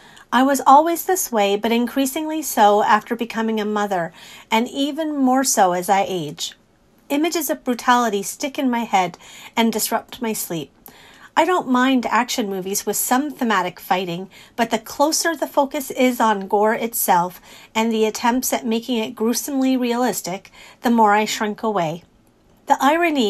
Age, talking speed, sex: 40-59, 160 wpm, female